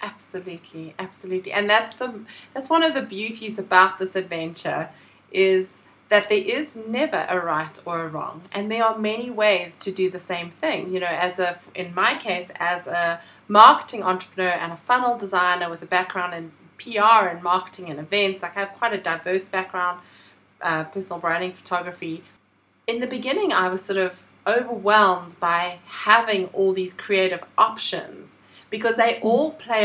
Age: 30-49